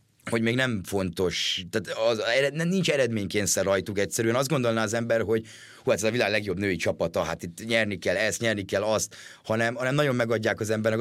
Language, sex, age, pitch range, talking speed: Hungarian, male, 30-49, 100-115 Hz, 195 wpm